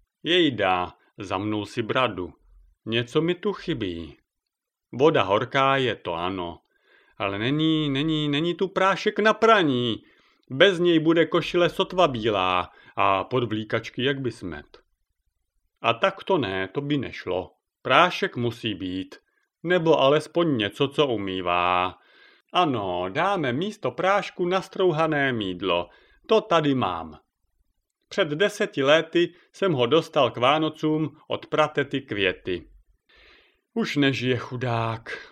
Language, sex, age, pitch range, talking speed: Czech, male, 40-59, 100-165 Hz, 125 wpm